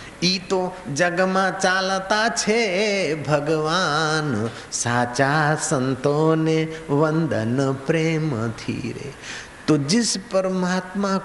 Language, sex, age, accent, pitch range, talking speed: Hindi, male, 50-69, native, 135-175 Hz, 75 wpm